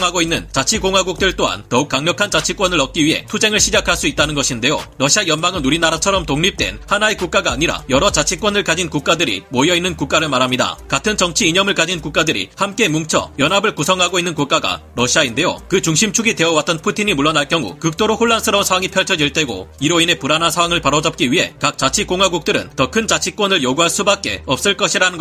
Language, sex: Korean, male